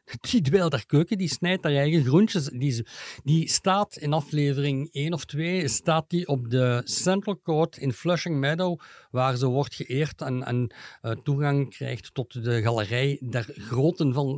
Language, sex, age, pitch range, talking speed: Dutch, male, 50-69, 130-160 Hz, 165 wpm